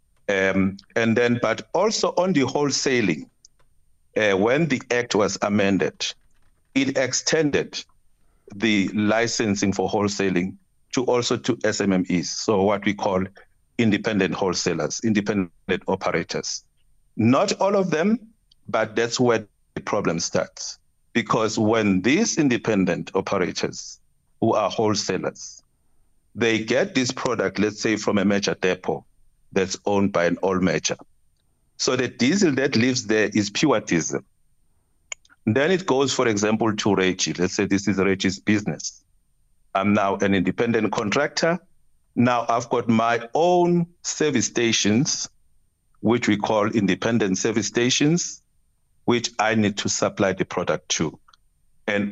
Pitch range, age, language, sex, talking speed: 95-120 Hz, 50-69, English, male, 130 wpm